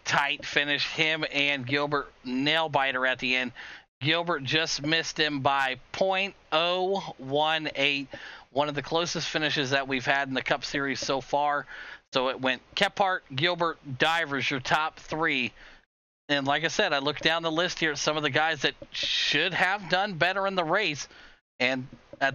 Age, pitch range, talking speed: 40-59, 135-160 Hz, 175 wpm